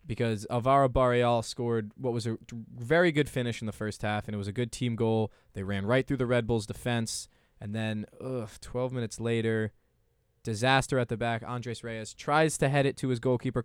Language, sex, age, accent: English, male, 20-39, American